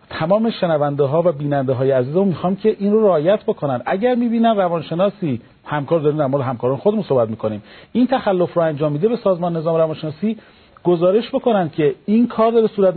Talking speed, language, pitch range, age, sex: 200 wpm, Persian, 155-200 Hz, 40-59, male